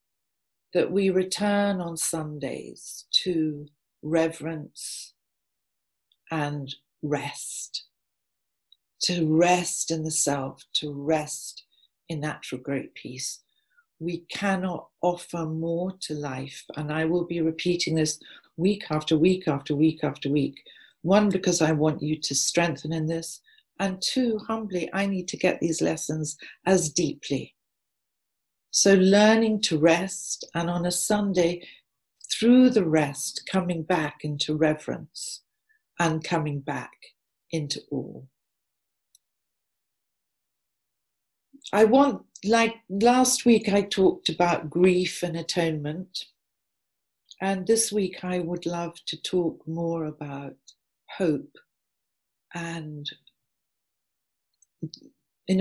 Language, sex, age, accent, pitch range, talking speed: English, female, 50-69, British, 150-190 Hz, 110 wpm